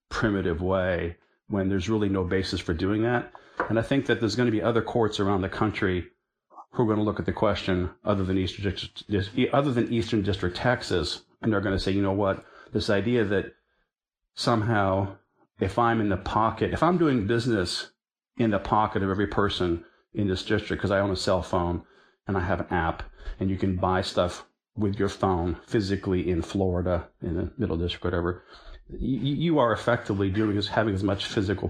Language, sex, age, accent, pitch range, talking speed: English, male, 40-59, American, 95-115 Hz, 200 wpm